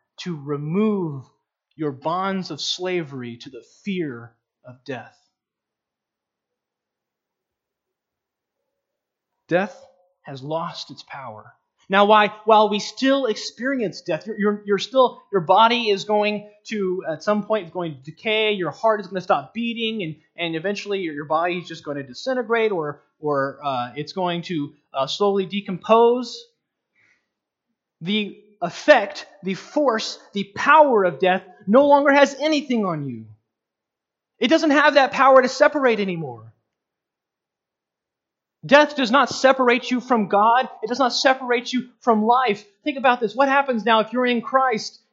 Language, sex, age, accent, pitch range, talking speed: English, male, 20-39, American, 175-245 Hz, 145 wpm